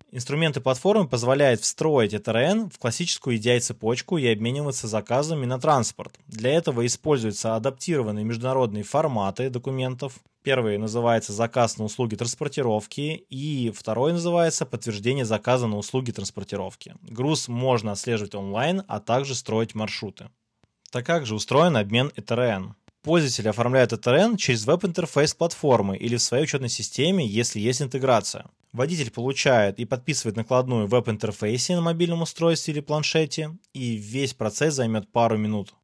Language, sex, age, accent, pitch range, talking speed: Russian, male, 20-39, native, 115-145 Hz, 130 wpm